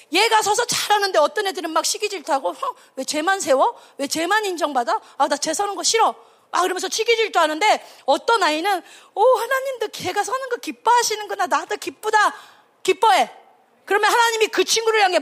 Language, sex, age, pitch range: Korean, female, 30-49, 290-430 Hz